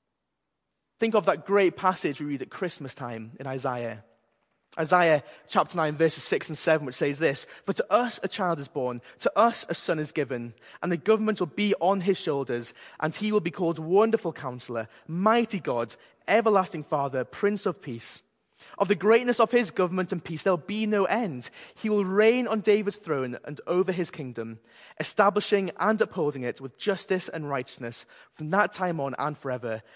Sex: male